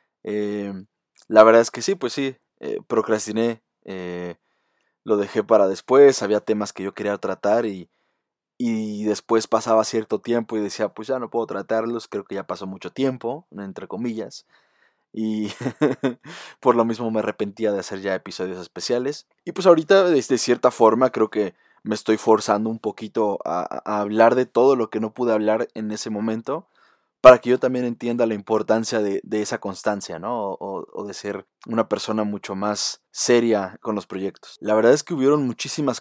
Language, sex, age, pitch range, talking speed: Spanish, male, 20-39, 105-125 Hz, 185 wpm